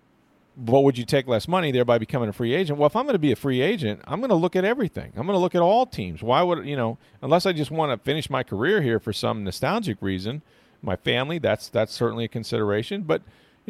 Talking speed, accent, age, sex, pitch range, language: 260 wpm, American, 40-59, male, 110-150 Hz, English